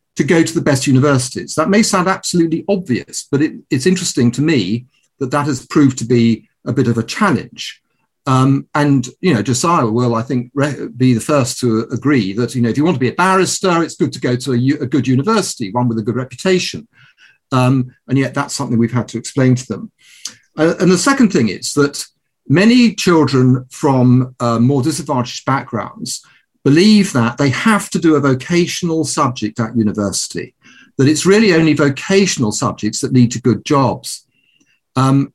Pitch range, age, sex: 125-175 Hz, 50-69, male